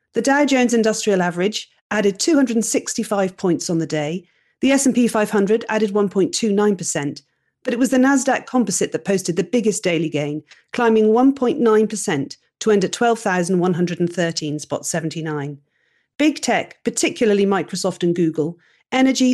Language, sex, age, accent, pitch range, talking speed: English, female, 40-59, British, 175-240 Hz, 130 wpm